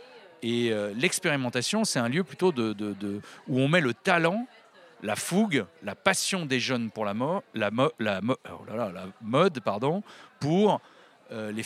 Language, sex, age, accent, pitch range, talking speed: French, male, 40-59, French, 115-165 Hz, 135 wpm